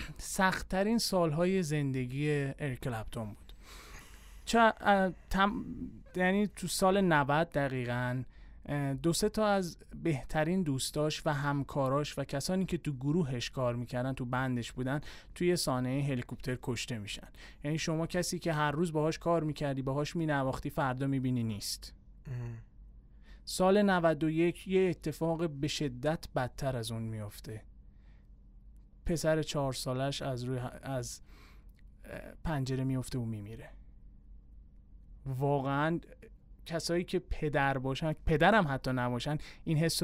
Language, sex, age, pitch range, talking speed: Persian, male, 30-49, 125-170 Hz, 120 wpm